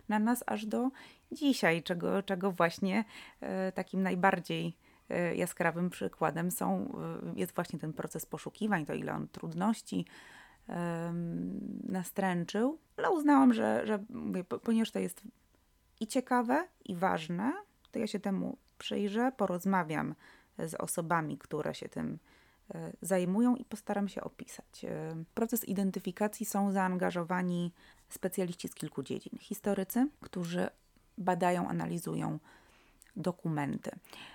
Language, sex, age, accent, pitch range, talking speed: Polish, female, 20-39, native, 175-215 Hz, 110 wpm